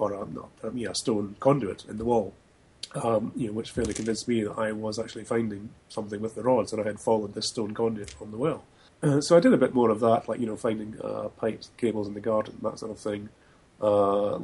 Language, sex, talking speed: English, male, 260 wpm